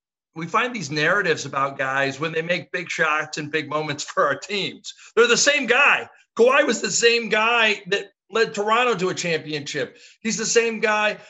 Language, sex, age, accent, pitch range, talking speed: English, male, 50-69, American, 145-220 Hz, 190 wpm